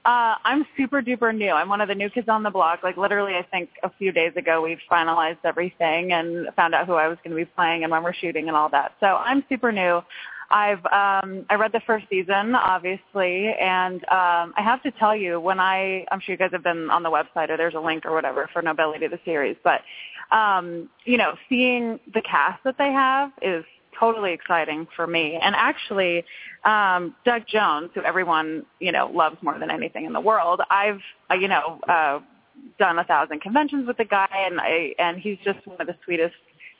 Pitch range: 170-215 Hz